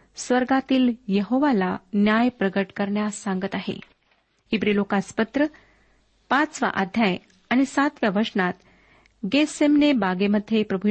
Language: Marathi